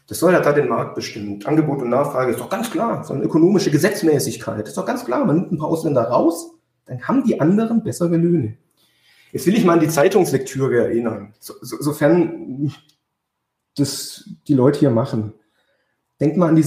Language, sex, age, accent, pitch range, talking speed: German, male, 30-49, German, 125-170 Hz, 200 wpm